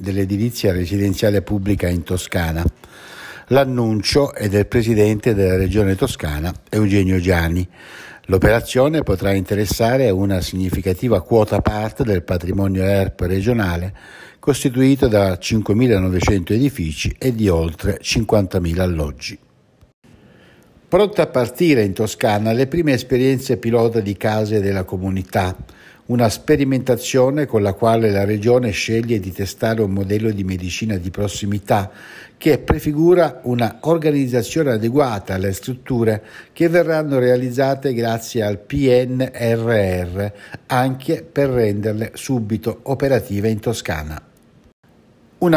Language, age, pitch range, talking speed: Italian, 60-79, 100-125 Hz, 110 wpm